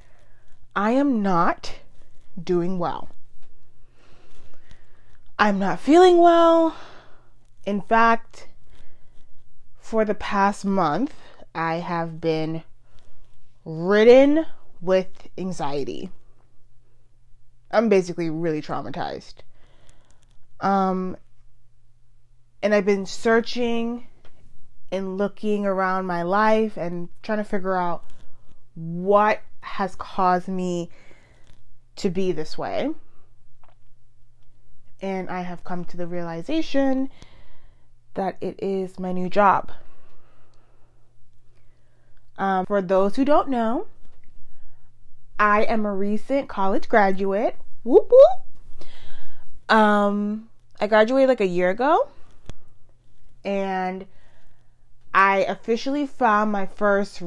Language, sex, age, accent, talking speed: English, female, 20-39, American, 90 wpm